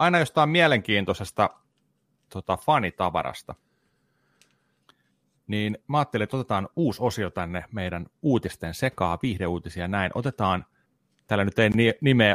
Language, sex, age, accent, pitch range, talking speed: Finnish, male, 30-49, native, 85-120 Hz, 110 wpm